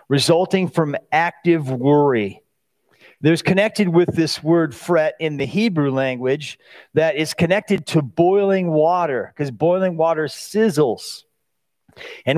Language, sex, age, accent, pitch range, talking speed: English, male, 40-59, American, 145-180 Hz, 120 wpm